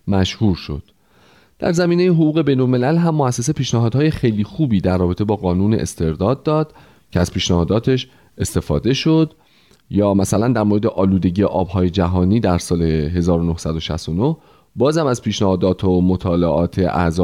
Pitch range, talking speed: 90-135 Hz, 135 wpm